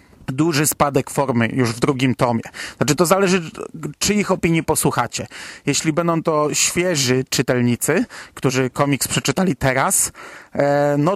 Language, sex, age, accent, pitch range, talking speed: Polish, male, 30-49, native, 135-160 Hz, 130 wpm